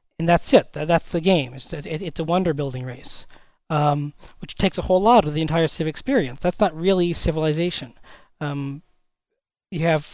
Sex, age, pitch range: male, 40-59, 150-185 Hz